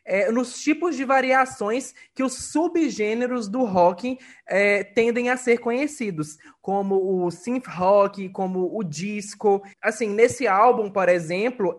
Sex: male